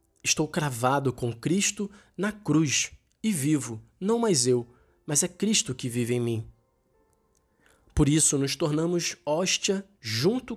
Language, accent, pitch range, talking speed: Portuguese, Brazilian, 130-190 Hz, 135 wpm